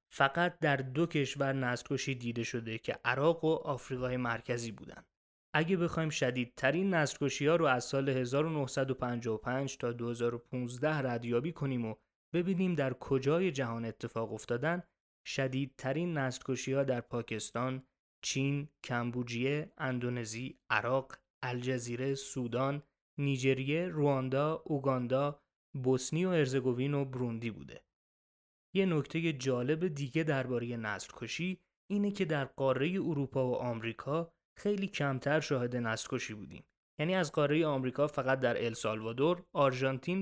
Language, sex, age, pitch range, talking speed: Persian, male, 20-39, 125-155 Hz, 120 wpm